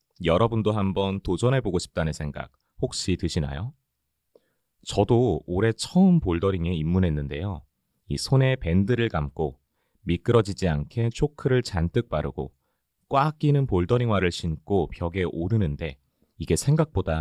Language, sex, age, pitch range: Korean, male, 30-49, 80-115 Hz